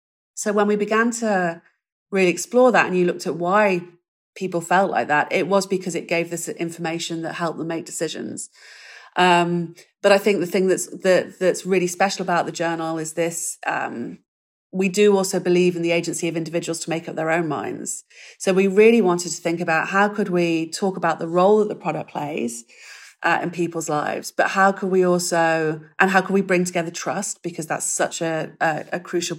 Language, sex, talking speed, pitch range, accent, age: English, female, 205 wpm, 165-190 Hz, British, 40-59